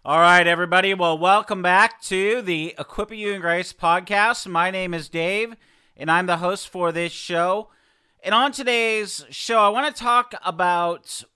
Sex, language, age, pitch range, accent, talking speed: male, English, 40-59, 165-210 Hz, American, 175 wpm